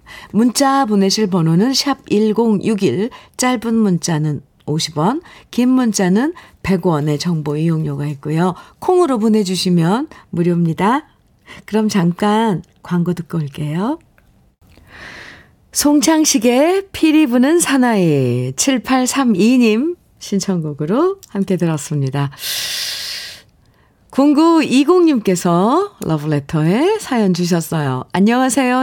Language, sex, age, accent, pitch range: Korean, female, 50-69, native, 170-255 Hz